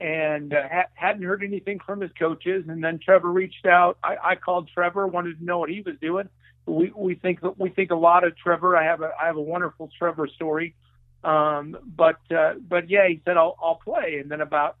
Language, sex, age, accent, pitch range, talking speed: English, male, 50-69, American, 155-180 Hz, 230 wpm